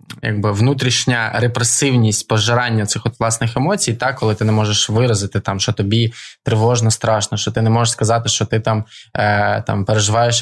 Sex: male